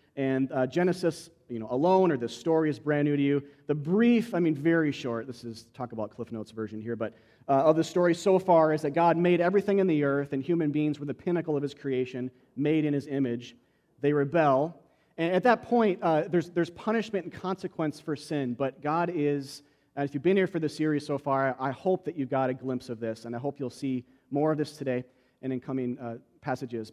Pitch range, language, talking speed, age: 120-155 Hz, English, 240 wpm, 40-59